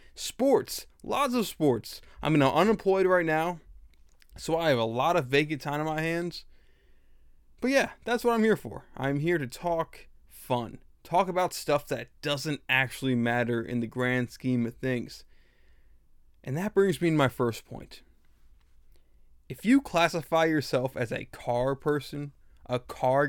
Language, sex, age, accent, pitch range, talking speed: English, male, 20-39, American, 125-165 Hz, 160 wpm